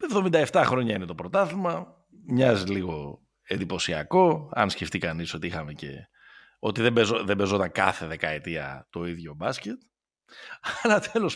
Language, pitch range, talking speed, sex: Greek, 90-135 Hz, 130 wpm, male